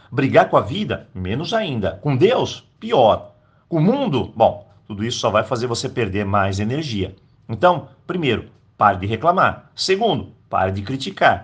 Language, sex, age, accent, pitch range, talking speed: Portuguese, male, 50-69, Brazilian, 115-165 Hz, 165 wpm